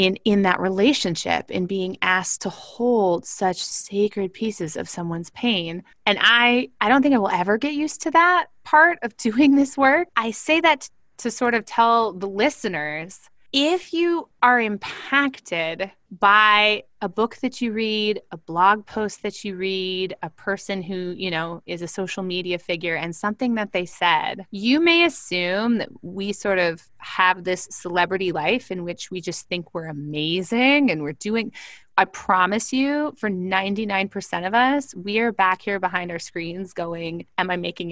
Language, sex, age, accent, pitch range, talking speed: English, female, 20-39, American, 185-245 Hz, 175 wpm